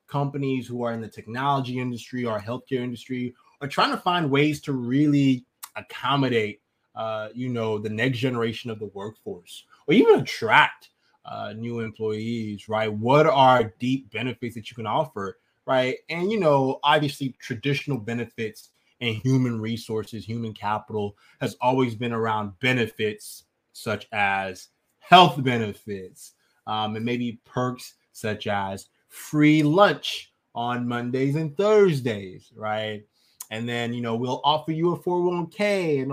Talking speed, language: 145 wpm, English